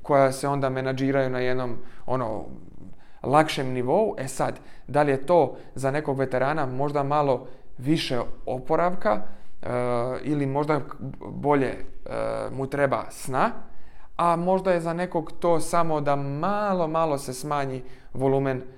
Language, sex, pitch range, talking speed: Croatian, male, 130-150 Hz, 130 wpm